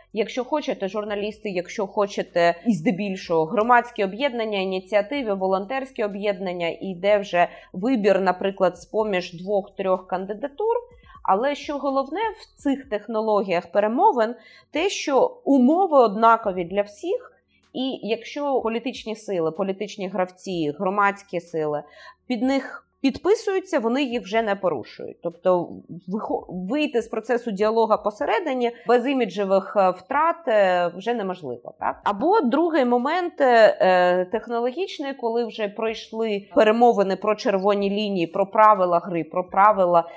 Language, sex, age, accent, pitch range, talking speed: Ukrainian, female, 20-39, native, 190-265 Hz, 115 wpm